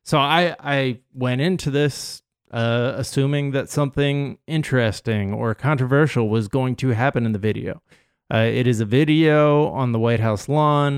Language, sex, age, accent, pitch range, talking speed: English, male, 30-49, American, 120-145 Hz, 165 wpm